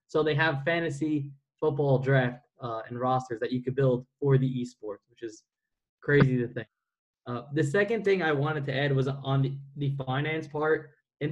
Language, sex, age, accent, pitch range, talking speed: English, male, 10-29, American, 130-155 Hz, 190 wpm